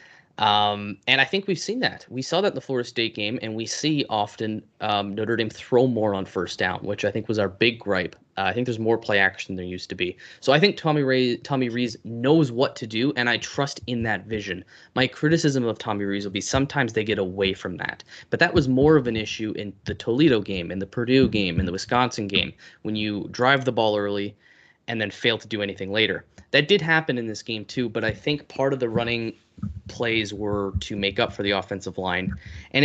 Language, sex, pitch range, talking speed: English, male, 105-130 Hz, 240 wpm